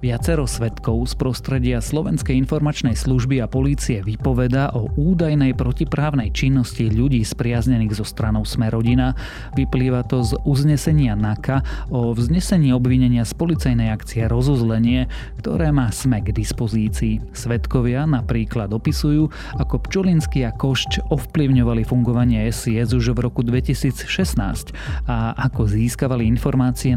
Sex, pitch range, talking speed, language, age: male, 115-135 Hz, 120 wpm, Slovak, 30-49